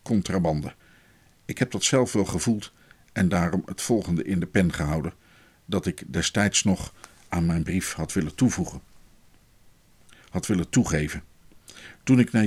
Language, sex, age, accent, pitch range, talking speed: Dutch, male, 50-69, Dutch, 85-110 Hz, 150 wpm